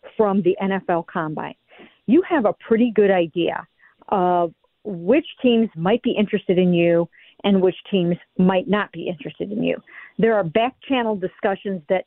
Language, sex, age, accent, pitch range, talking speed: English, female, 50-69, American, 180-225 Hz, 165 wpm